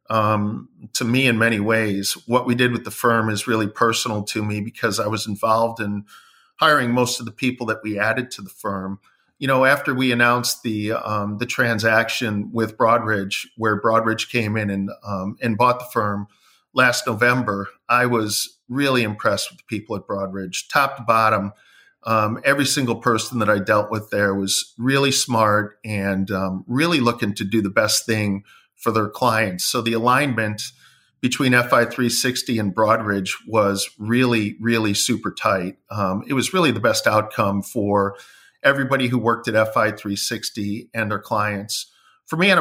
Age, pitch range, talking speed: 40-59, 105-120 Hz, 175 wpm